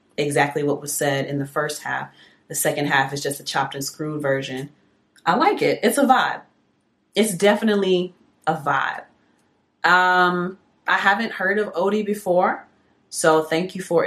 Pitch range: 145-180 Hz